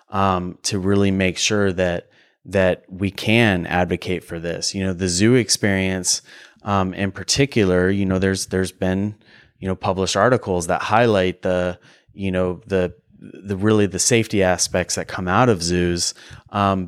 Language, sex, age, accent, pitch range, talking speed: English, male, 30-49, American, 90-100 Hz, 165 wpm